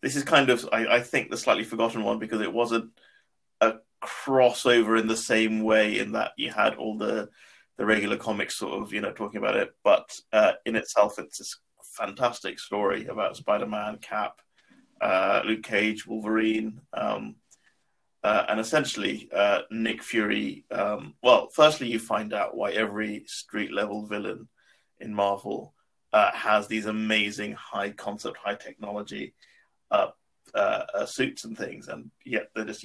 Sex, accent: male, British